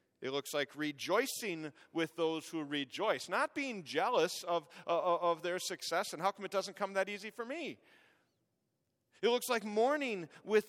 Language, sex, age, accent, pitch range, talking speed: English, male, 40-59, American, 125-185 Hz, 175 wpm